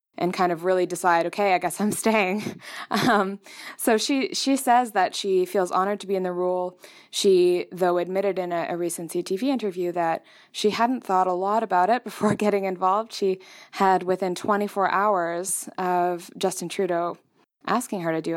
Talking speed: 185 wpm